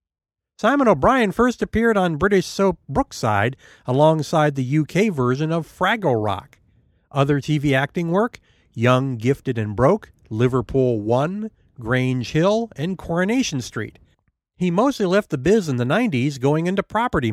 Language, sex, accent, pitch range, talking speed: English, male, American, 125-185 Hz, 140 wpm